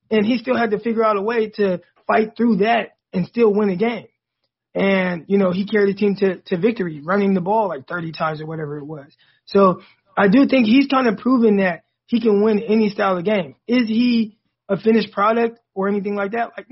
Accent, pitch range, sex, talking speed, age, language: American, 185-215 Hz, male, 230 wpm, 20-39, English